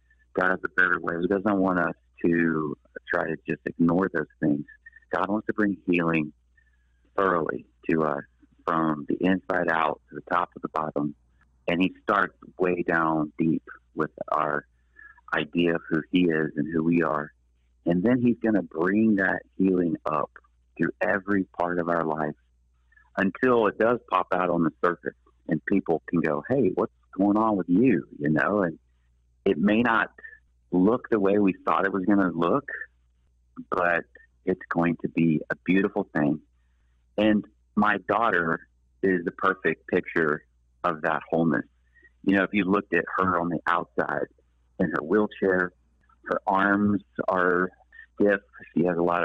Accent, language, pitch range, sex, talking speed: American, English, 75-95 Hz, male, 170 wpm